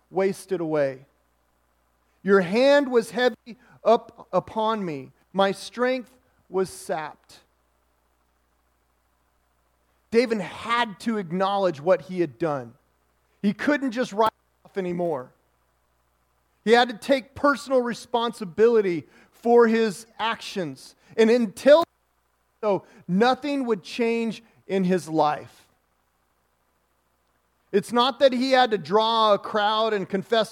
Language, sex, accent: English, male, American